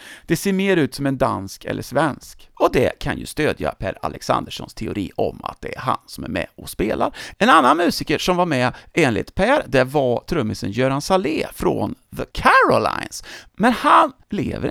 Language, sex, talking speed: English, male, 190 wpm